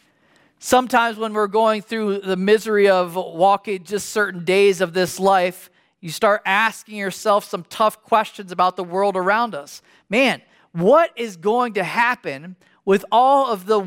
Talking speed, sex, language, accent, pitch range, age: 160 wpm, male, English, American, 190-240 Hz, 40-59